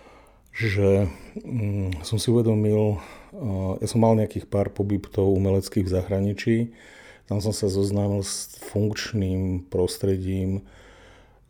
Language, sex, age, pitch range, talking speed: Slovak, male, 40-59, 95-105 Hz, 110 wpm